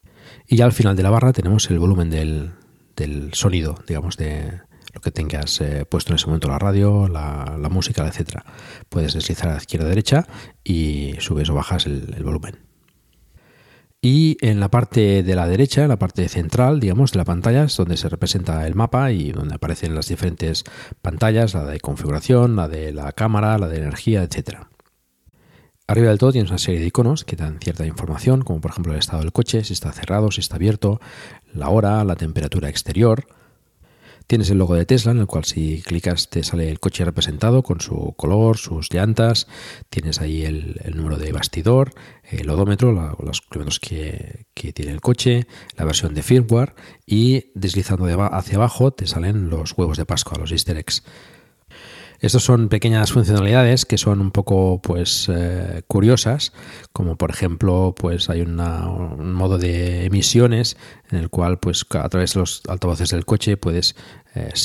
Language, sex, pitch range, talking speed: Spanish, male, 80-110 Hz, 185 wpm